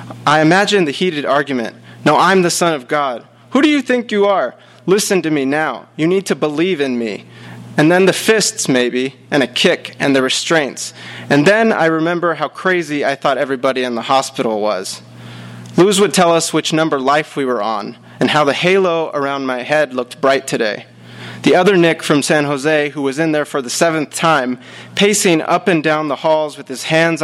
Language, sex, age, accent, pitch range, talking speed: English, male, 30-49, American, 125-165 Hz, 205 wpm